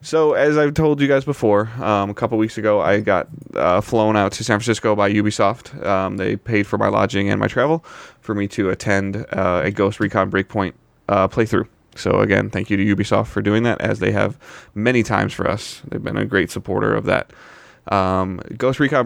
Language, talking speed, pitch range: English, 215 wpm, 100-115 Hz